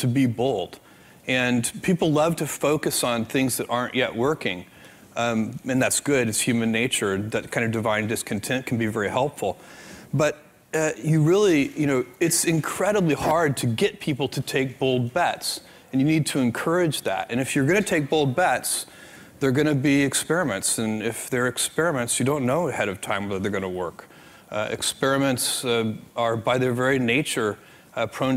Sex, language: male, English